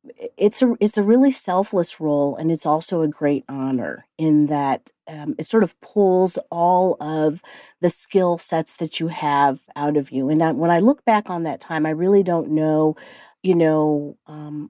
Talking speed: 185 wpm